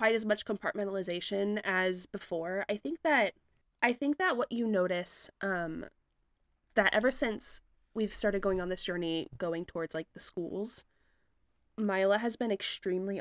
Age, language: 20-39, English